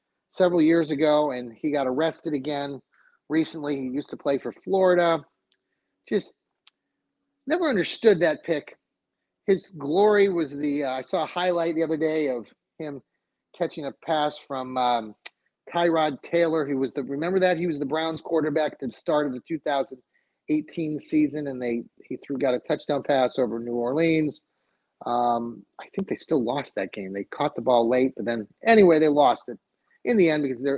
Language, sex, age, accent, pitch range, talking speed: English, male, 30-49, American, 150-205 Hz, 180 wpm